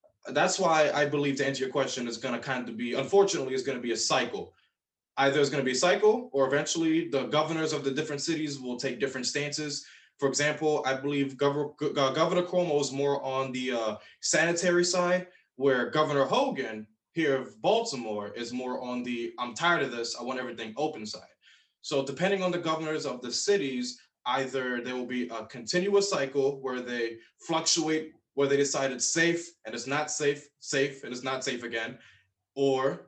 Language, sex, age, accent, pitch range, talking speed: English, male, 20-39, American, 130-160 Hz, 190 wpm